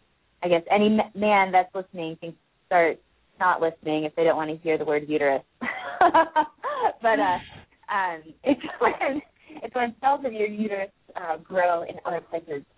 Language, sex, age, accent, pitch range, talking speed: English, female, 30-49, American, 155-210 Hz, 170 wpm